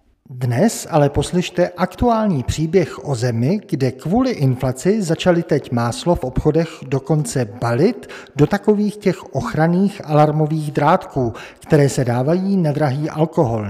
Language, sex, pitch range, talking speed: Czech, male, 125-175 Hz, 125 wpm